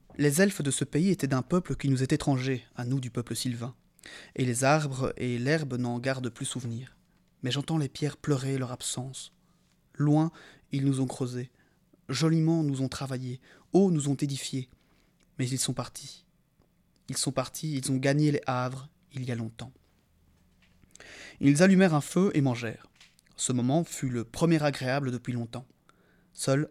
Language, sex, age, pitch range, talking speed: French, male, 20-39, 125-160 Hz, 175 wpm